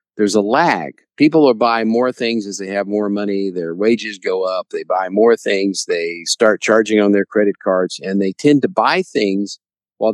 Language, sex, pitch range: English, male, 100-130 Hz